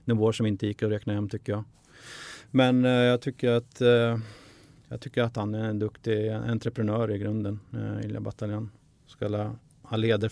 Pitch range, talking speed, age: 105-120 Hz, 180 wpm, 30-49